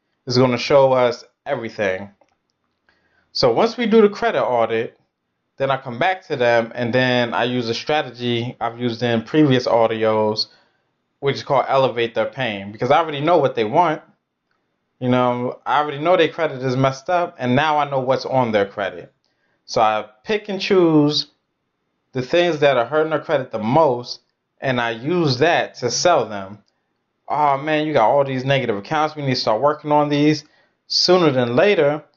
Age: 20-39